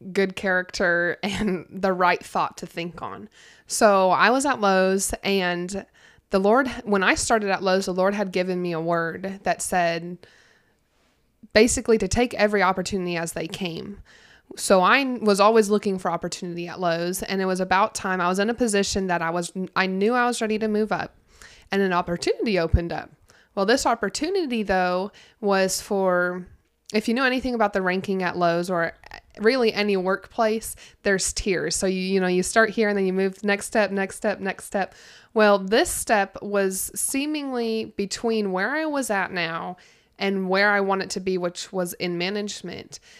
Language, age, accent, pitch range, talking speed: English, 20-39, American, 185-225 Hz, 185 wpm